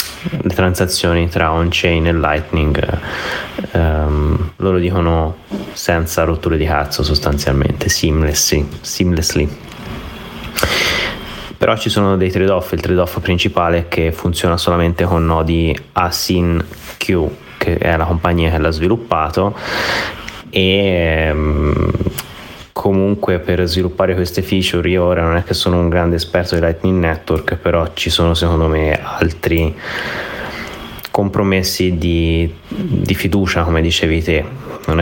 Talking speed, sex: 120 wpm, male